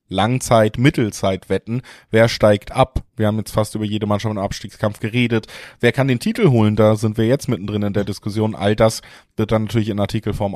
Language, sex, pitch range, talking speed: German, male, 105-130 Hz, 195 wpm